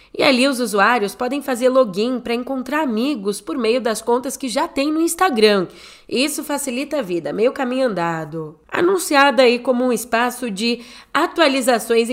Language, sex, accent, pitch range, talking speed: Portuguese, female, Brazilian, 195-260 Hz, 165 wpm